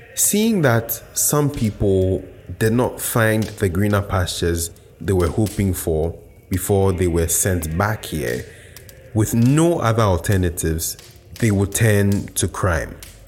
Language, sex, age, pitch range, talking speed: English, male, 30-49, 95-115 Hz, 130 wpm